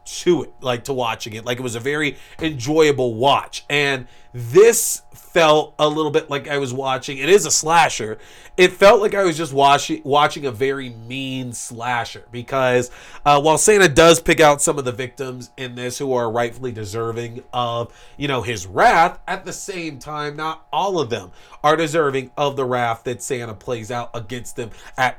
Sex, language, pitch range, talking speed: male, English, 120-155 Hz, 195 wpm